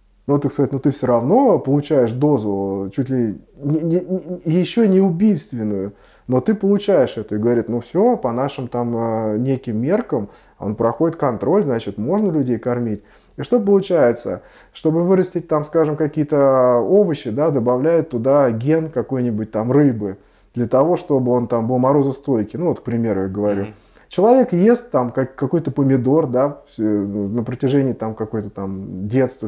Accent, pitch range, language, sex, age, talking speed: native, 115-155 Hz, Russian, male, 20-39, 155 wpm